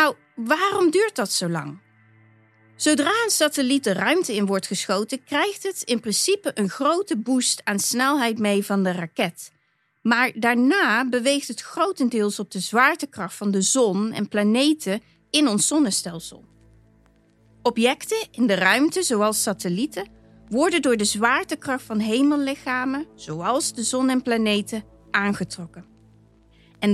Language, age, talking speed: Dutch, 30-49, 140 wpm